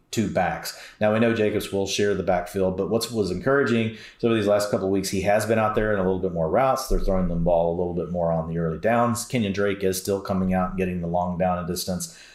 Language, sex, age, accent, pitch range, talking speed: English, male, 30-49, American, 90-110 Hz, 280 wpm